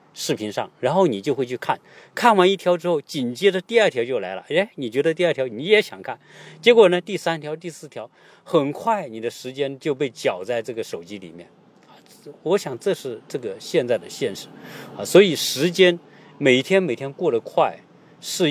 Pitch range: 135-200 Hz